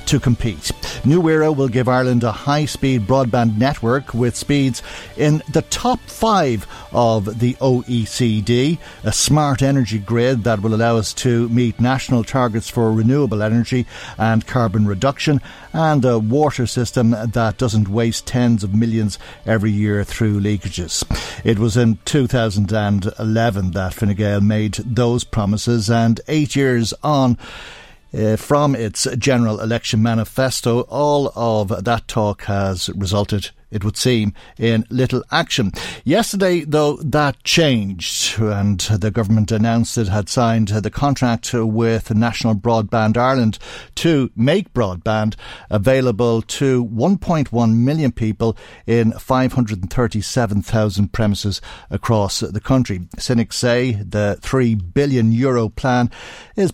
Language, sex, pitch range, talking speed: English, male, 110-130 Hz, 130 wpm